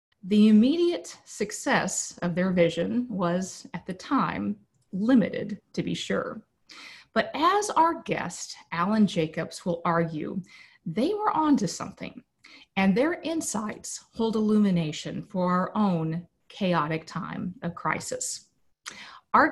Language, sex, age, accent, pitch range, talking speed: English, female, 40-59, American, 175-235 Hz, 120 wpm